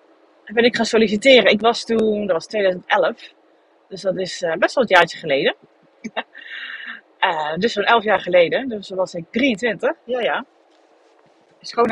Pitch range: 230-310 Hz